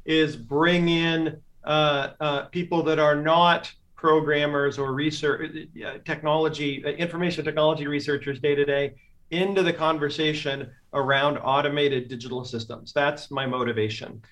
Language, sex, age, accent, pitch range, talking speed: English, male, 40-59, American, 135-155 Hz, 130 wpm